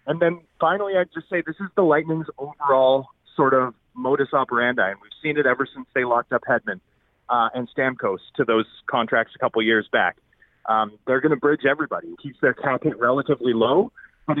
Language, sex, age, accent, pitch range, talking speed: English, male, 30-49, American, 125-155 Hz, 205 wpm